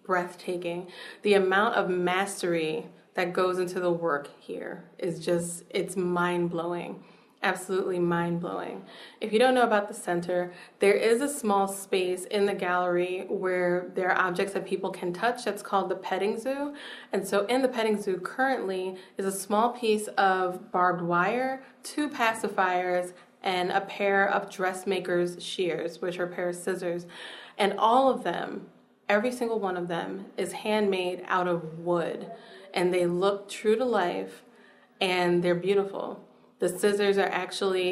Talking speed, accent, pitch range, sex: 160 wpm, American, 180-205 Hz, female